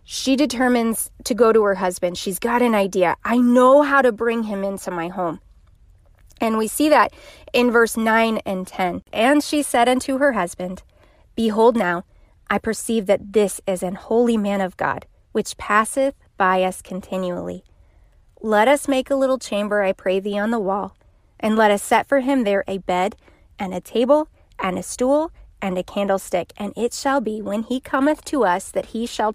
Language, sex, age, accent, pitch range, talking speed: English, female, 20-39, American, 195-235 Hz, 190 wpm